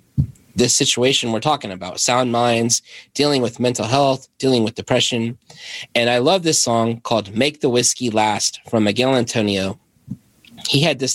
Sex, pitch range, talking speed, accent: male, 110-130 Hz, 160 wpm, American